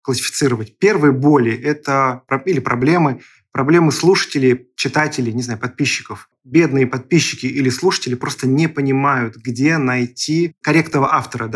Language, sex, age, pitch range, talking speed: Russian, male, 20-39, 125-150 Hz, 115 wpm